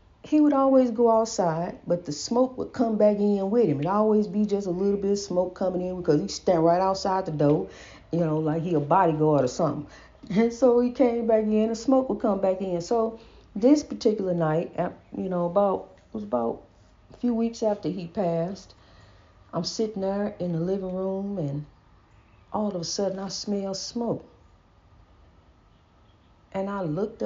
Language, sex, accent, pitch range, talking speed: English, female, American, 150-225 Hz, 190 wpm